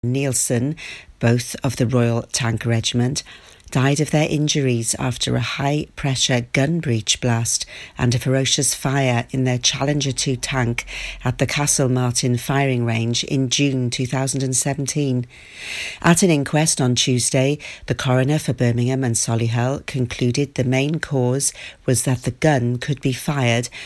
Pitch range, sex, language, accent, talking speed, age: 125-145 Hz, female, English, British, 145 wpm, 50-69